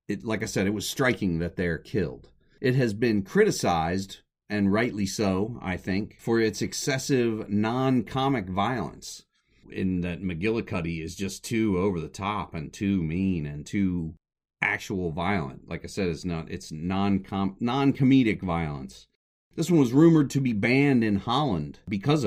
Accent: American